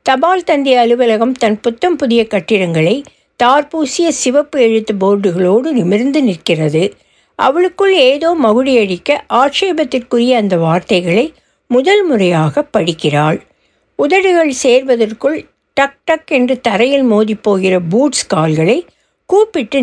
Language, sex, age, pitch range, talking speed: Tamil, female, 60-79, 210-300 Hz, 100 wpm